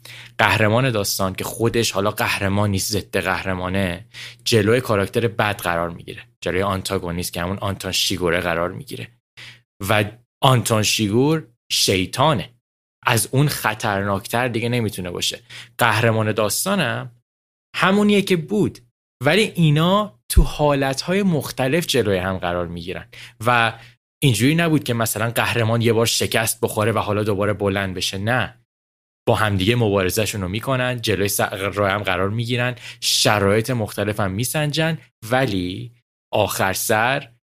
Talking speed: 130 wpm